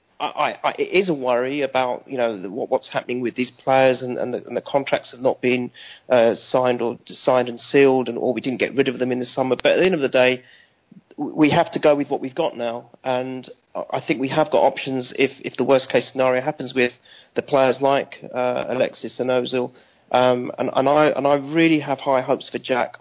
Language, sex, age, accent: English, male, 30-49, British